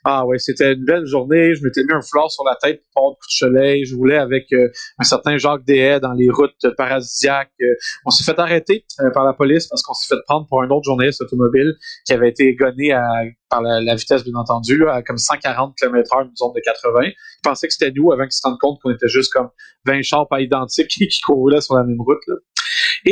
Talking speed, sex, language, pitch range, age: 245 wpm, male, French, 130-185 Hz, 30-49